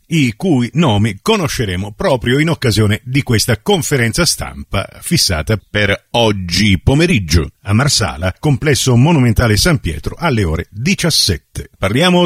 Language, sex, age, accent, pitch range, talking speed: Italian, male, 50-69, native, 115-160 Hz, 120 wpm